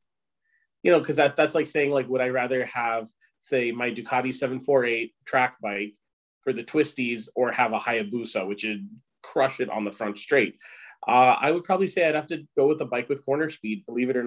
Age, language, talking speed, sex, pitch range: 30-49, English, 215 wpm, male, 120-145 Hz